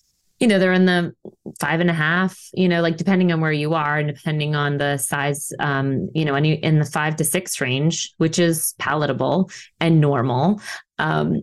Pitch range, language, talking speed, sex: 150-180 Hz, English, 200 wpm, female